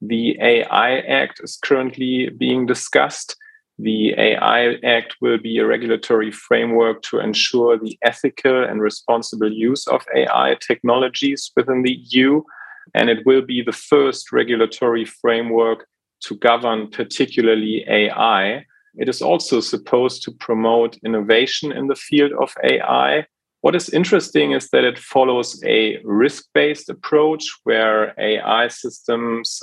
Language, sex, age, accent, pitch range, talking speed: English, male, 30-49, German, 110-135 Hz, 130 wpm